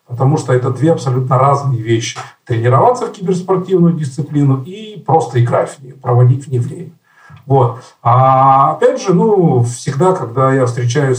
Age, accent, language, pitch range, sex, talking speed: 40-59, native, Russian, 125-160 Hz, male, 155 wpm